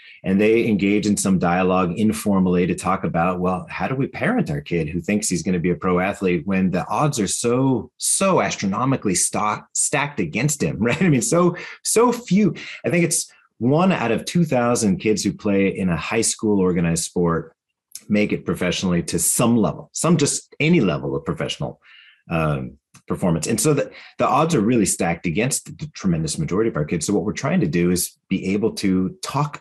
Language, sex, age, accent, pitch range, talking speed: English, male, 30-49, American, 90-120 Hz, 205 wpm